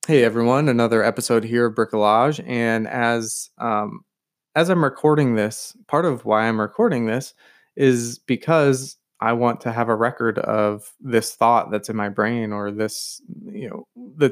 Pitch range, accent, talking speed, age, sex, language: 110-135 Hz, American, 170 wpm, 20-39, male, English